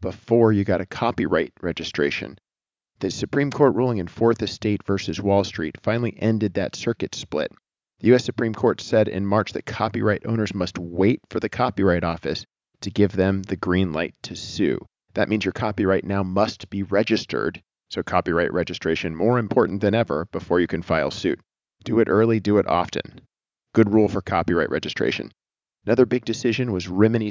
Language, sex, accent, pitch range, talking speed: English, male, American, 90-110 Hz, 180 wpm